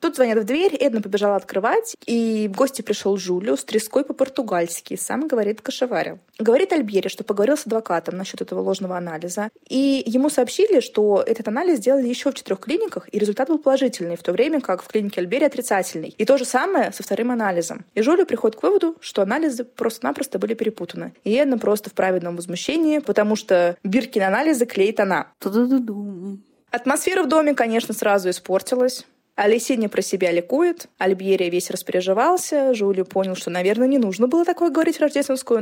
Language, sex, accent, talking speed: Russian, female, native, 175 wpm